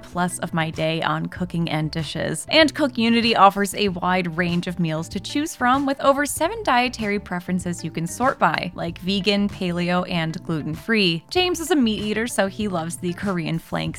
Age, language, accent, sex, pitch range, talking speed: 20-39, English, American, female, 180-255 Hz, 190 wpm